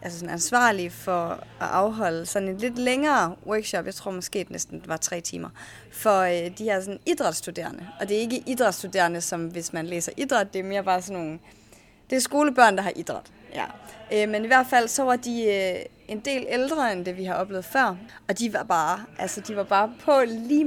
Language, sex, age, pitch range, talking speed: Danish, female, 30-49, 180-245 Hz, 215 wpm